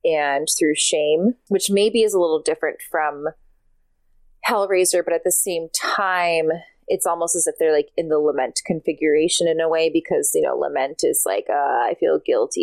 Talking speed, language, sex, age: 185 wpm, English, female, 20-39